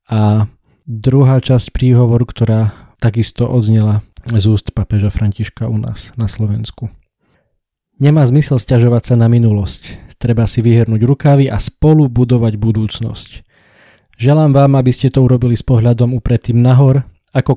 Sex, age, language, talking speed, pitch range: male, 20-39, Slovak, 135 wpm, 110-130 Hz